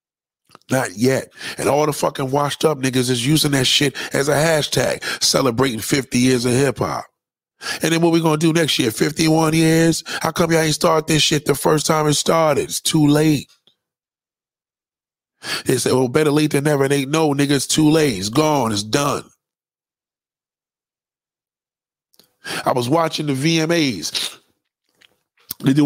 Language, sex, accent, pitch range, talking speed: English, male, American, 140-165 Hz, 165 wpm